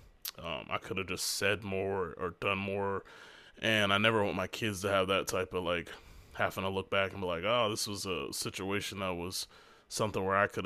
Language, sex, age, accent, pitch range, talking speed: English, male, 20-39, American, 95-110 Hz, 225 wpm